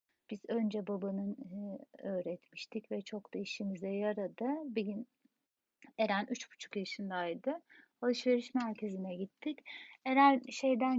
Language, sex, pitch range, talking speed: Turkish, female, 205-270 Hz, 105 wpm